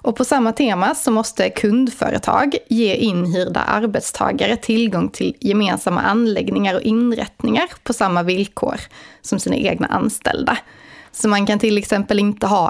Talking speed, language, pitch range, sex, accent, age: 140 wpm, Swedish, 205-255 Hz, female, native, 20-39